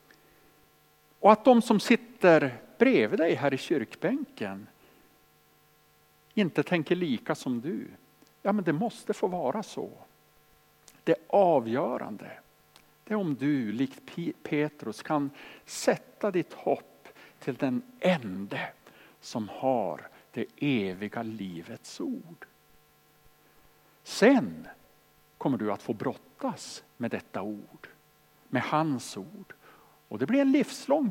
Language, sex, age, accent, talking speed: Swedish, male, 60-79, Norwegian, 115 wpm